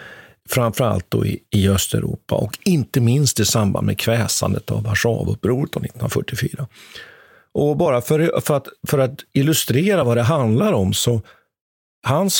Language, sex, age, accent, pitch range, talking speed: Swedish, male, 50-69, native, 105-135 Hz, 135 wpm